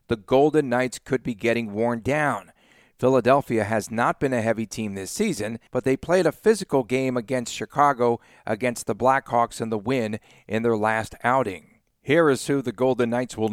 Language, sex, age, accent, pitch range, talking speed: English, male, 50-69, American, 110-135 Hz, 185 wpm